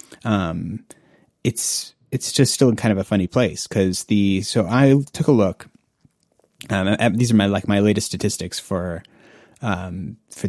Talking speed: 170 wpm